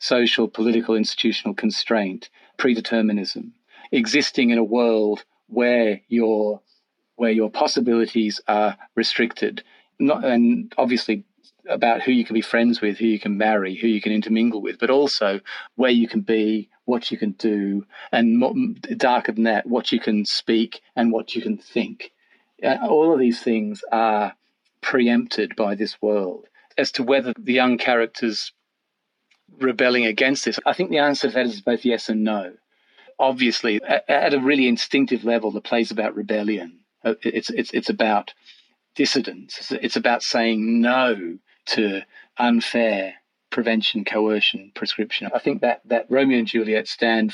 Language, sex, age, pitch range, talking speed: English, male, 40-59, 110-120 Hz, 150 wpm